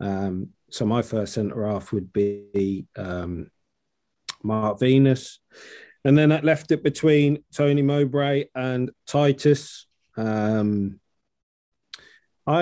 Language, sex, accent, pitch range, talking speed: English, male, British, 105-120 Hz, 105 wpm